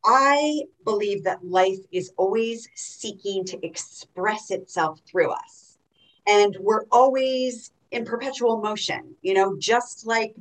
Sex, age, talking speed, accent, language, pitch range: female, 40-59, 125 wpm, American, English, 180-230 Hz